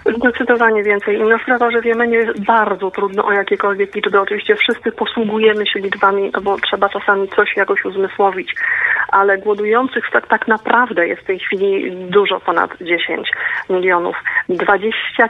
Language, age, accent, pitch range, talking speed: Polish, 40-59, American, 195-230 Hz, 150 wpm